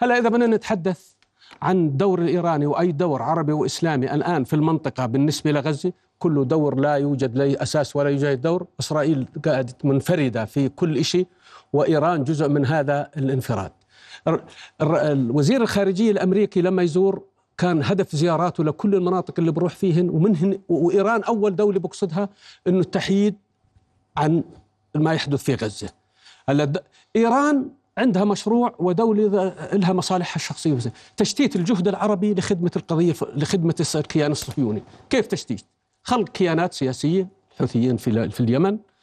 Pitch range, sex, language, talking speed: 140-200 Hz, male, Arabic, 125 wpm